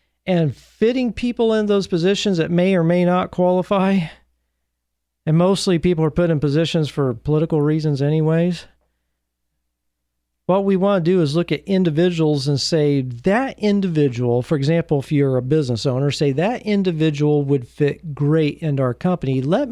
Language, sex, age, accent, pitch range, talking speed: English, male, 40-59, American, 125-185 Hz, 160 wpm